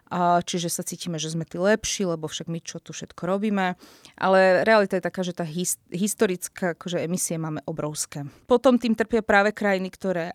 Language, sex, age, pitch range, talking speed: Slovak, female, 20-39, 170-195 Hz, 175 wpm